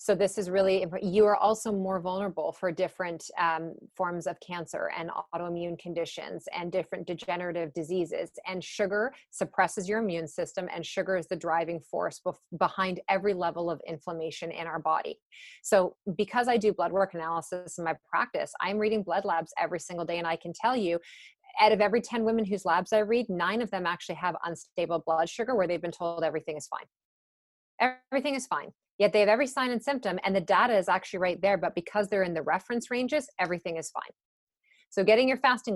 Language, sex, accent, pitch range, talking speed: English, female, American, 170-210 Hz, 200 wpm